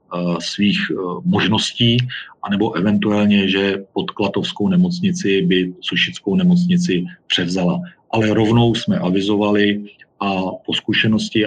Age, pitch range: 40-59, 90-105 Hz